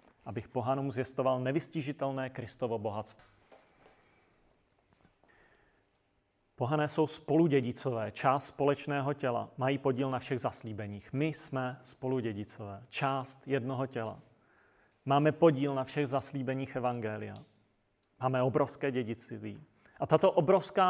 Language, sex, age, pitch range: Czech, male, 40-59, 120-150 Hz